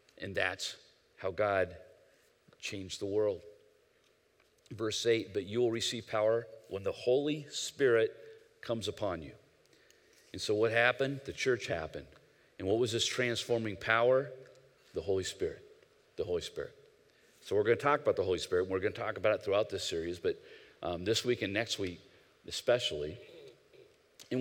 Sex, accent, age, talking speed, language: male, American, 40-59, 165 wpm, English